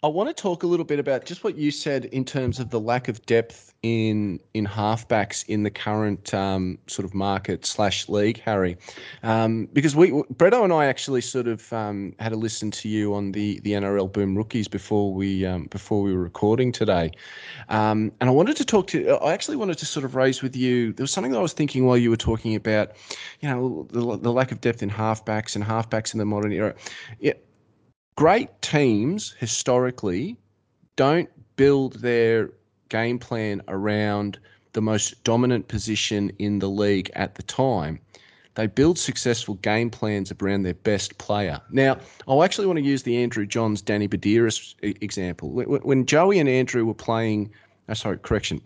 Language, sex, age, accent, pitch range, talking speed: English, male, 20-39, Australian, 105-125 Hz, 190 wpm